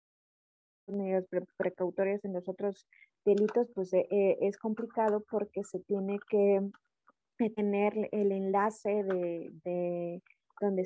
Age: 20-39